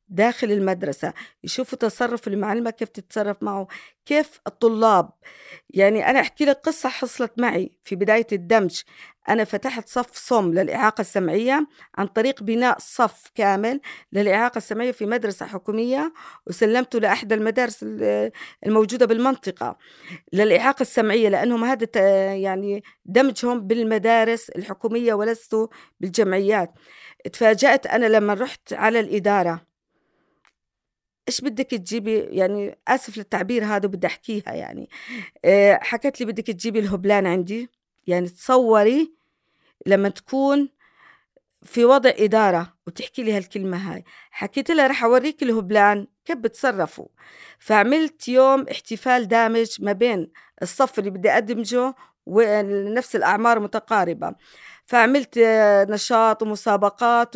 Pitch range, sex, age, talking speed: 205-245 Hz, female, 40-59, 110 wpm